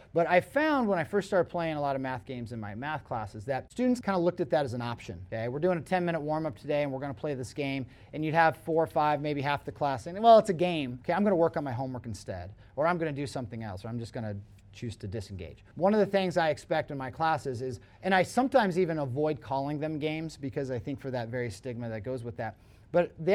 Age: 30-49